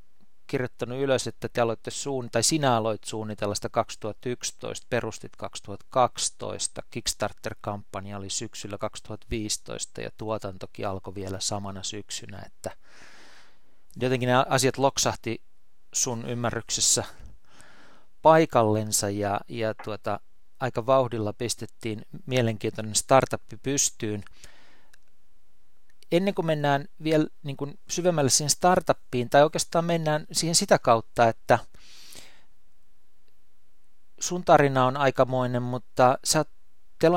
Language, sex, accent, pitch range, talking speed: Finnish, male, native, 105-140 Hz, 100 wpm